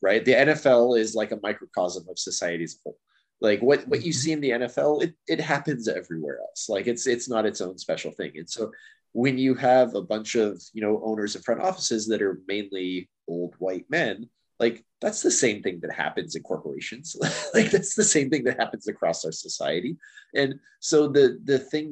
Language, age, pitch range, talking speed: English, 30-49, 110-140 Hz, 210 wpm